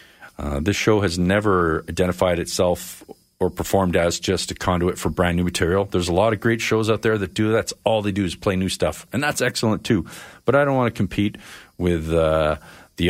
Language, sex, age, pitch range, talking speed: English, male, 40-59, 85-105 Hz, 220 wpm